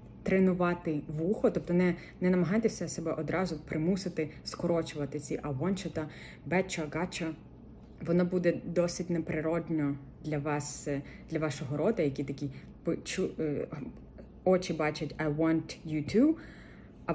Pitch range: 150-180 Hz